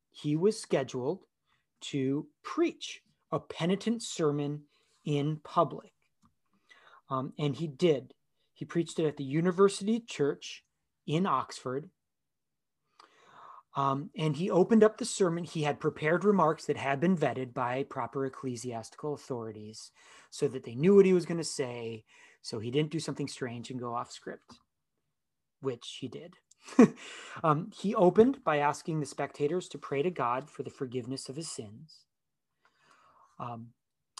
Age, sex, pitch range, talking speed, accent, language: 30-49, male, 135-170 Hz, 145 wpm, American, English